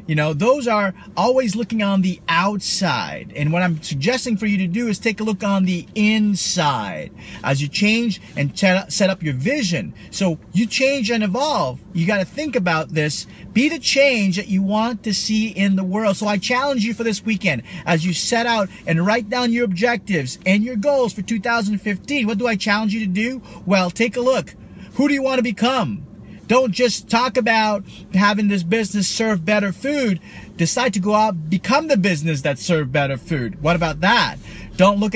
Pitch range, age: 175-230 Hz, 40-59